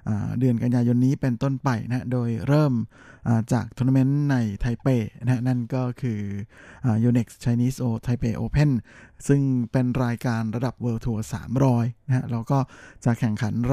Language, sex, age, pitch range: Thai, male, 20-39, 115-135 Hz